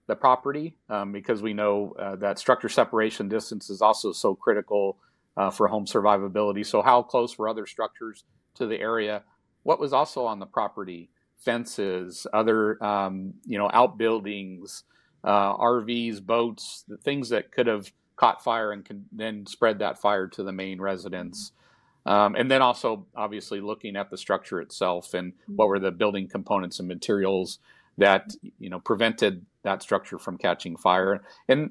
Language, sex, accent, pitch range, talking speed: English, male, American, 100-120 Hz, 165 wpm